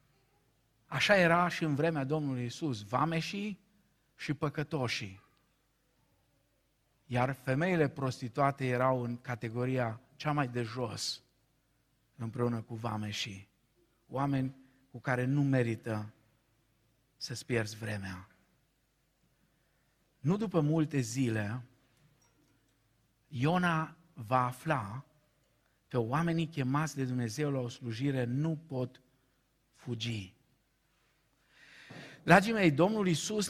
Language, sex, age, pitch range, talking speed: Romanian, male, 50-69, 120-150 Hz, 95 wpm